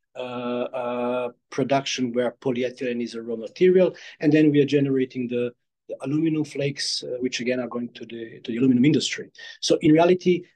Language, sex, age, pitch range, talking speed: Romanian, male, 40-59, 125-150 Hz, 180 wpm